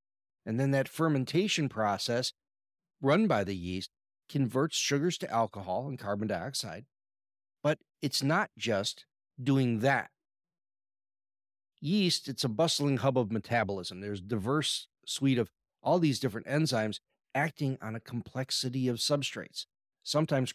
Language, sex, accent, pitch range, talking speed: English, male, American, 110-145 Hz, 130 wpm